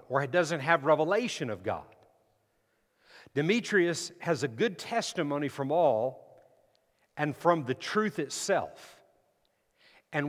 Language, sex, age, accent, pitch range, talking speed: English, male, 50-69, American, 150-195 Hz, 115 wpm